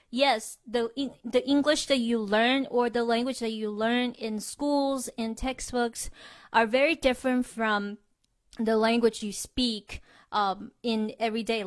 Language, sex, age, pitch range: Chinese, female, 20-39, 210-250 Hz